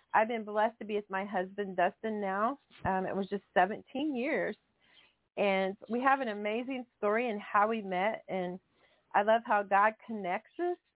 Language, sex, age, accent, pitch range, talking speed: English, female, 30-49, American, 195-220 Hz, 180 wpm